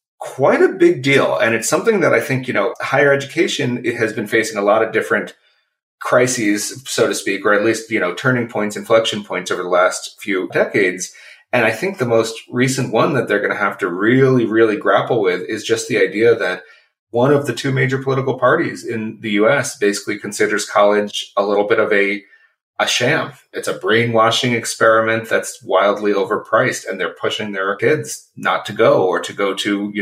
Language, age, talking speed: English, 30-49, 205 wpm